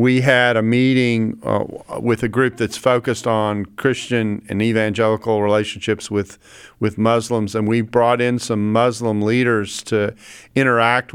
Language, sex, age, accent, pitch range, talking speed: English, male, 50-69, American, 115-140 Hz, 145 wpm